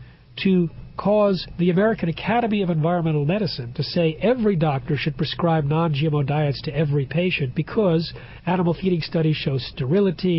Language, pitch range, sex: English, 140-180 Hz, male